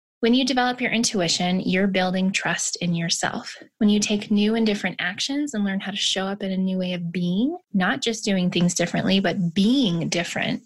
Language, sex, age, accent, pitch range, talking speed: English, female, 20-39, American, 195-245 Hz, 210 wpm